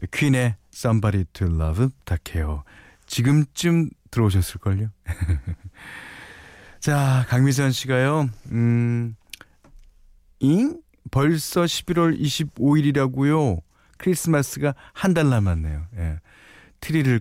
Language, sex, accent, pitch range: Korean, male, native, 90-135 Hz